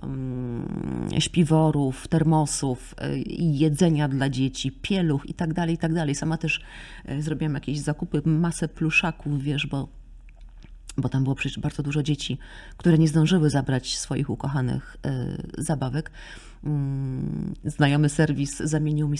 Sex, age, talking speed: female, 30-49, 110 wpm